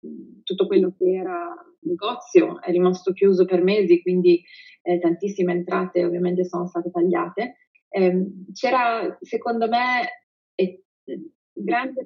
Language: Italian